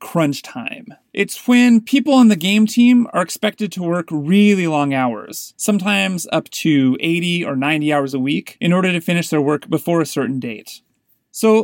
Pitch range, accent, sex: 150-205 Hz, American, male